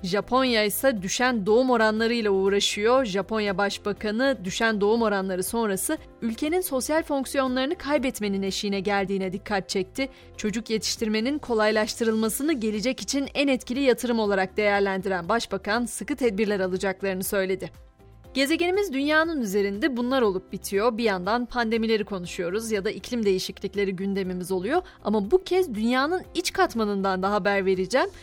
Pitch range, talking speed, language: 200-270 Hz, 130 wpm, Turkish